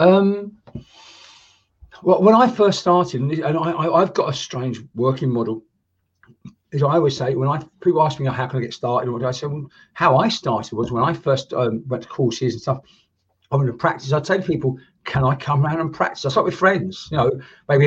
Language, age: English, 50-69